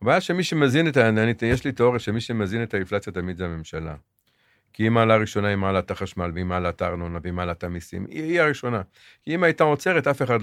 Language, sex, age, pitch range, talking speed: Hebrew, male, 50-69, 95-125 Hz, 215 wpm